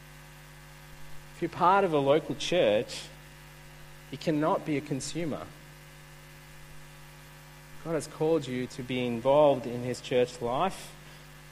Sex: male